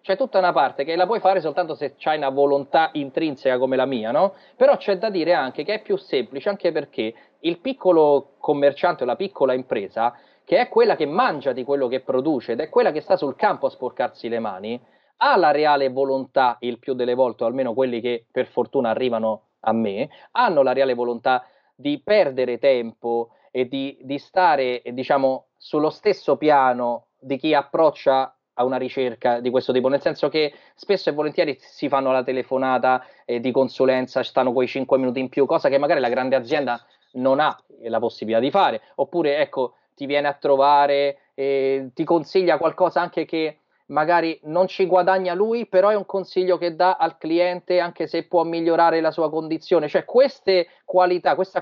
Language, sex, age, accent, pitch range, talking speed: Italian, male, 20-39, native, 135-185 Hz, 190 wpm